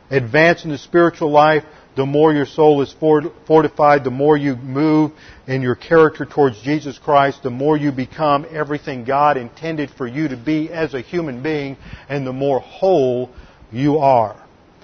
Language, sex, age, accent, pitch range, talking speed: English, male, 40-59, American, 130-155 Hz, 170 wpm